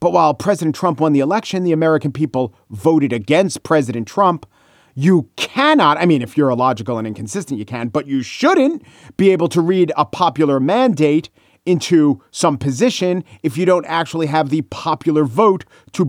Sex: male